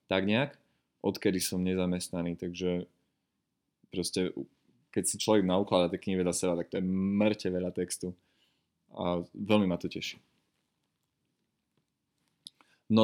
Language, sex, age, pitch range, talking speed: Slovak, male, 20-39, 90-100 Hz, 125 wpm